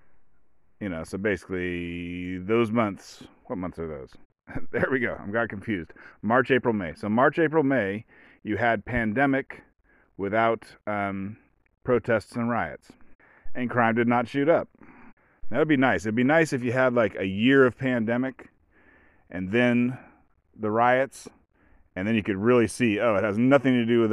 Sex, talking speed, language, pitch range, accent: male, 165 wpm, English, 100-125 Hz, American